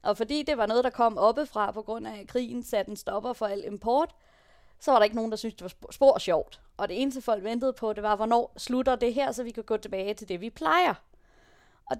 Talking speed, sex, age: 250 wpm, female, 20-39